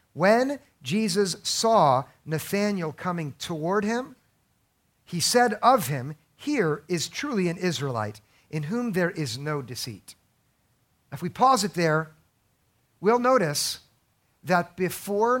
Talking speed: 120 wpm